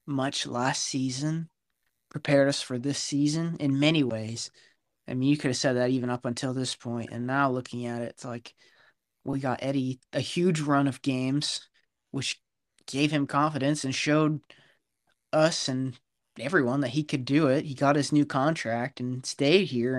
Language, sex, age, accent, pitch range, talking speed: English, male, 20-39, American, 125-145 Hz, 185 wpm